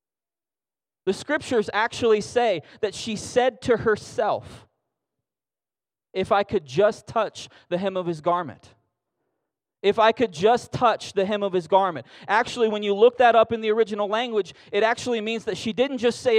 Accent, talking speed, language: American, 170 wpm, English